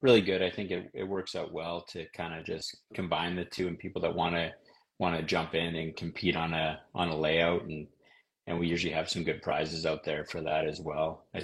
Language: English